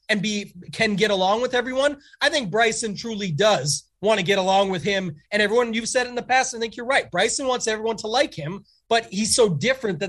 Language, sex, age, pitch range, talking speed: English, male, 30-49, 185-225 Hz, 245 wpm